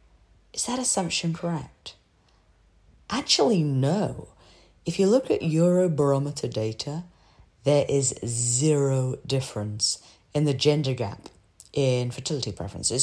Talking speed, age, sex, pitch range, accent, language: 105 wpm, 30-49, female, 115-170 Hz, British, English